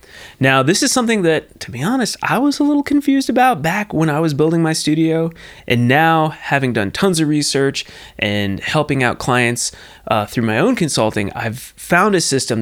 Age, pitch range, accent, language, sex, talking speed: 20-39, 110-165 Hz, American, English, male, 195 wpm